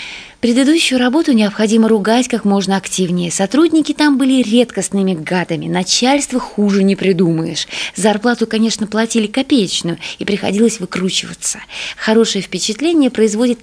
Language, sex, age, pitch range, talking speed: Russian, female, 20-39, 190-245 Hz, 115 wpm